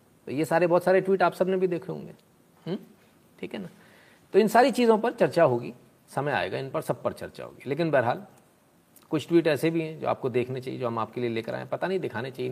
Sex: male